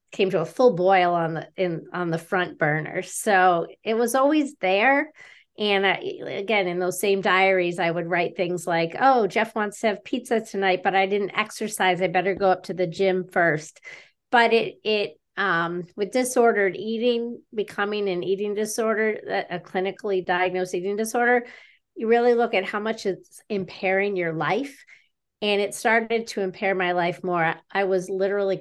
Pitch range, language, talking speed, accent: 180-215 Hz, English, 180 wpm, American